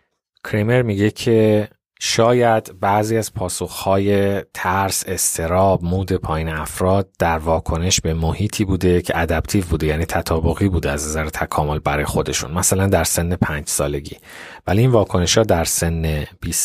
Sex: male